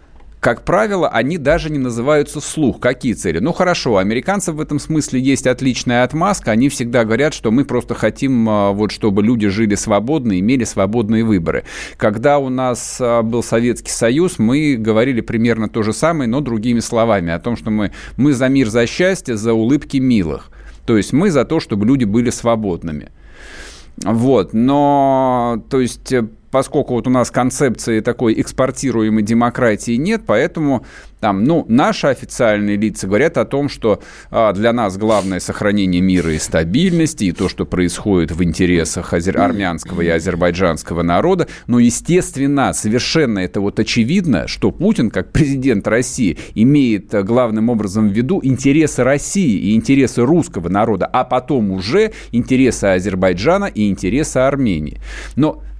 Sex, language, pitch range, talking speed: male, Russian, 105-135 Hz, 150 wpm